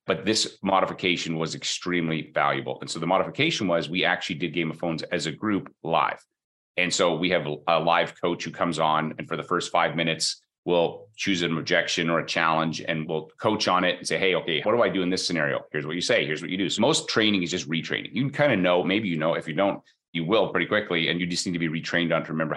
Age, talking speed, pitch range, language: 30-49, 265 wpm, 80-95 Hz, English